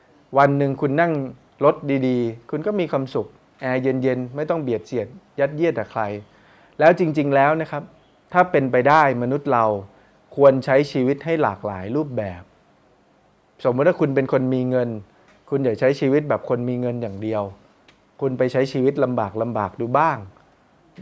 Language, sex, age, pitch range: Thai, male, 20-39, 115-150 Hz